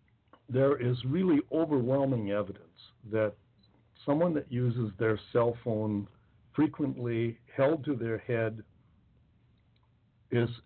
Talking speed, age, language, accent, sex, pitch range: 100 wpm, 60-79, English, American, male, 105-125 Hz